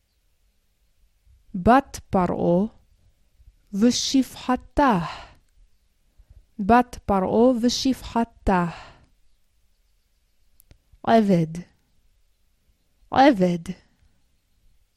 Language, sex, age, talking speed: Hebrew, female, 20-39, 40 wpm